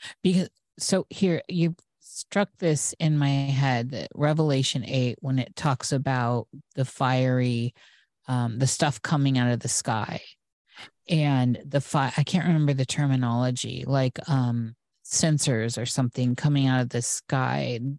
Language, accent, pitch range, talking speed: English, American, 130-165 Hz, 145 wpm